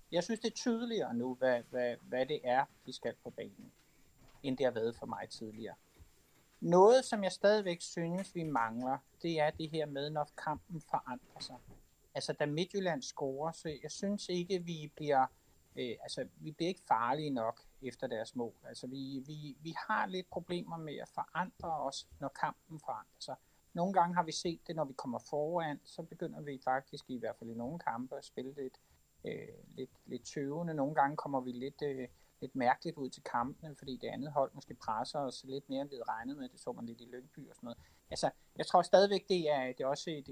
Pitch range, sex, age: 130-175 Hz, male, 60-79